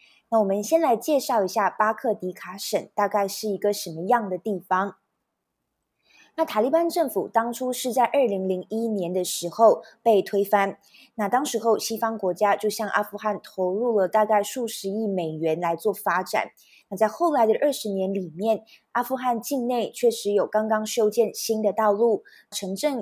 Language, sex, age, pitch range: Chinese, female, 20-39, 195-235 Hz